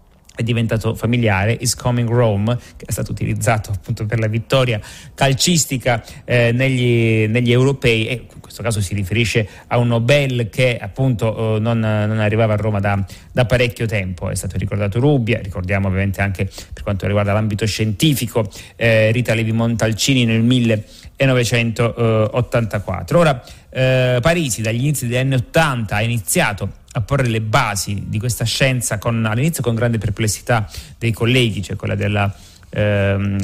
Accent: native